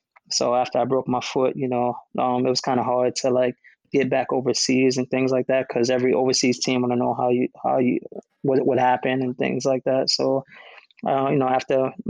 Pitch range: 125-135 Hz